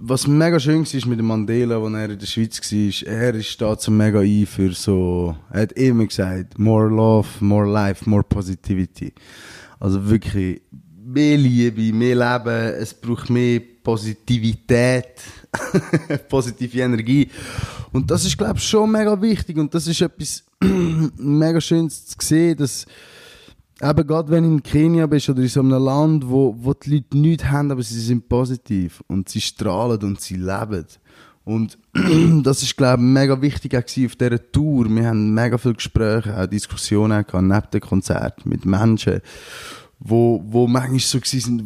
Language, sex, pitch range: German, male, 105-140 Hz